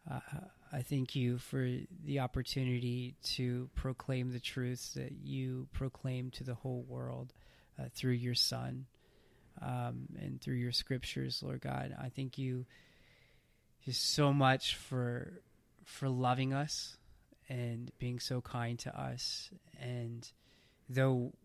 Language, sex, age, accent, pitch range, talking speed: English, male, 30-49, American, 120-130 Hz, 130 wpm